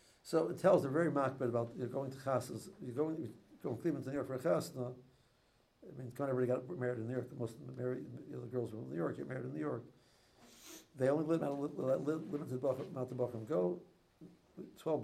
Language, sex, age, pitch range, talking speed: English, male, 60-79, 125-155 Hz, 230 wpm